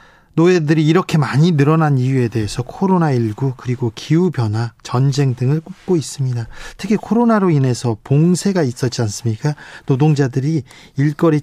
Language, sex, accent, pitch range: Korean, male, native, 125-160 Hz